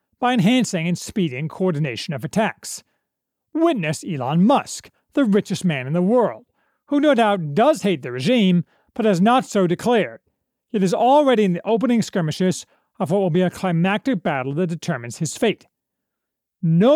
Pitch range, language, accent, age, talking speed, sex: 170-235 Hz, English, American, 40-59, 165 wpm, male